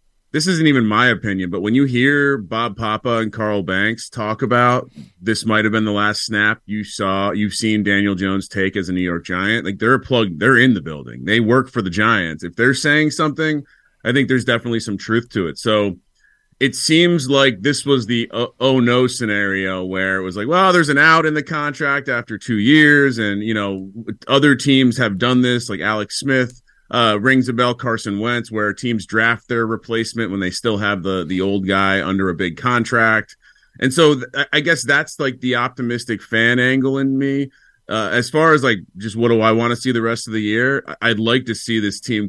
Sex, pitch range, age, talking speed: male, 105-130 Hz, 30-49, 220 wpm